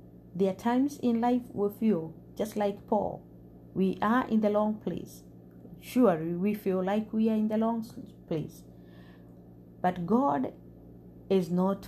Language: English